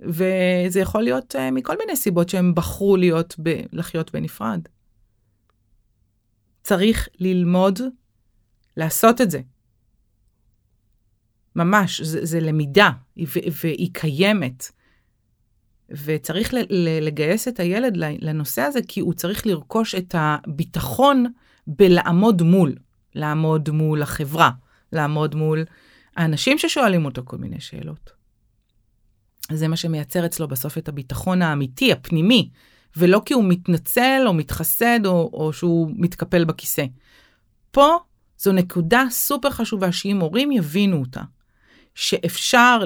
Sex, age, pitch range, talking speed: female, 30-49, 135-195 Hz, 110 wpm